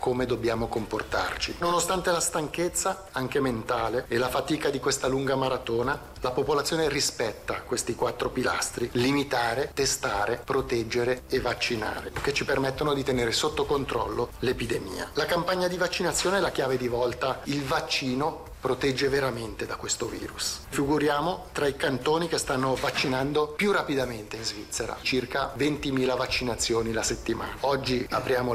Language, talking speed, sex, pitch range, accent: Italian, 145 wpm, male, 125-165 Hz, native